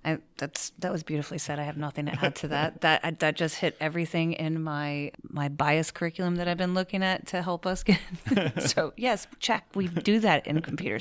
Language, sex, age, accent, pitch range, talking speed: English, female, 30-49, American, 160-180 Hz, 220 wpm